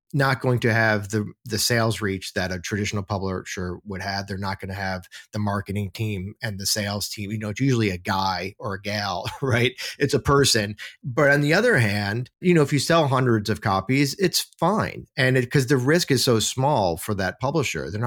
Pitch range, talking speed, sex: 95-135 Hz, 220 wpm, male